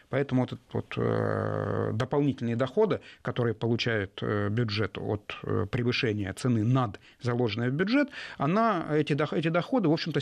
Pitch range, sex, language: 120-170 Hz, male, Russian